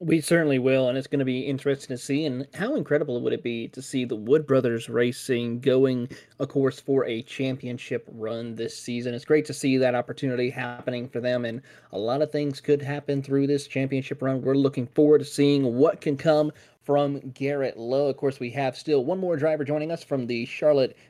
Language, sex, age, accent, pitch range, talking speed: English, male, 20-39, American, 130-155 Hz, 215 wpm